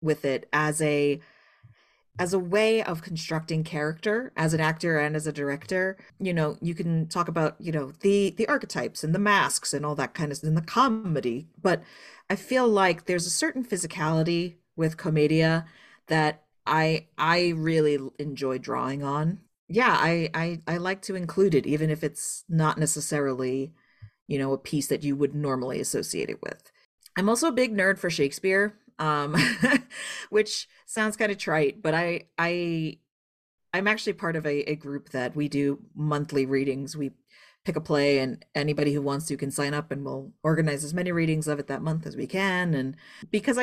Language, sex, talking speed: English, female, 185 wpm